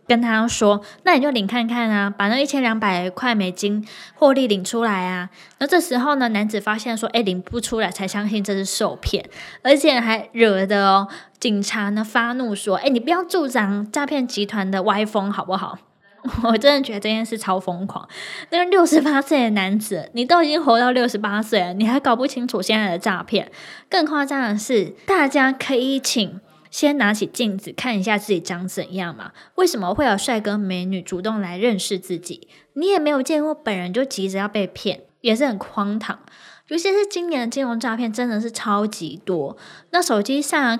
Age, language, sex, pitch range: 20-39, Chinese, female, 200-265 Hz